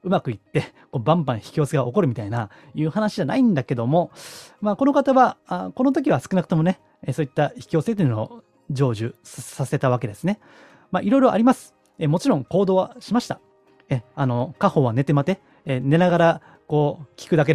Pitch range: 135-210 Hz